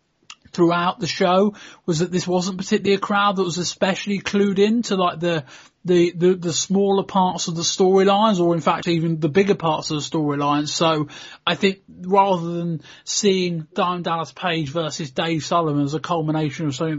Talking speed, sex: 185 wpm, male